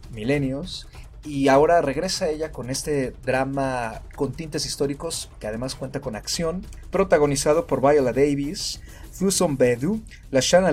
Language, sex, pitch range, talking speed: Spanish, male, 125-145 Hz, 130 wpm